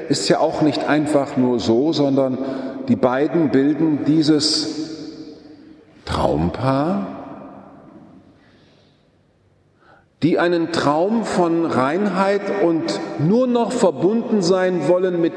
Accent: German